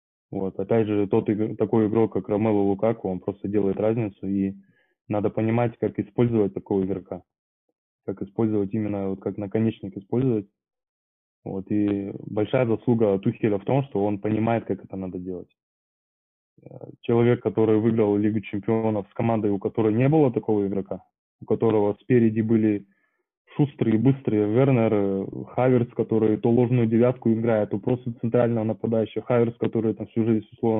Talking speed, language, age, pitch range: 150 wpm, Russian, 20-39, 100-115 Hz